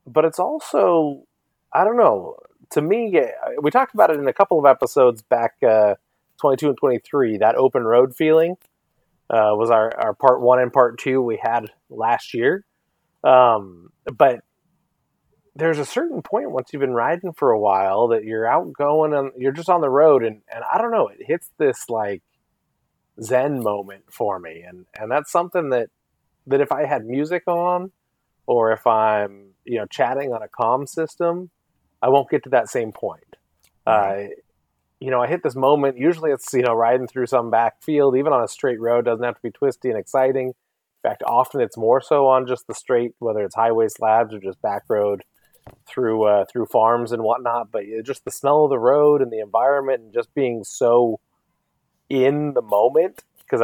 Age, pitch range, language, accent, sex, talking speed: 30-49, 110-145 Hz, English, American, male, 190 wpm